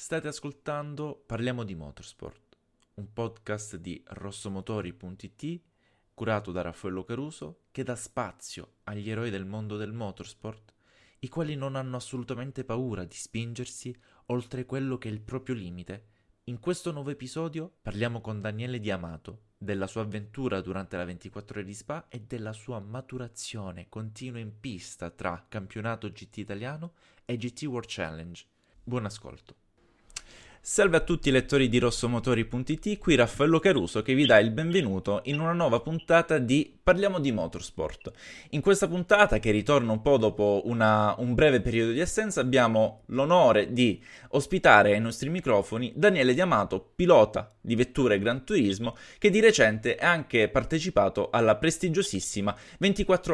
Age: 20-39